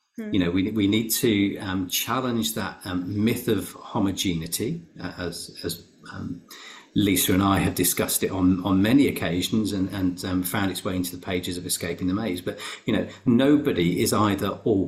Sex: male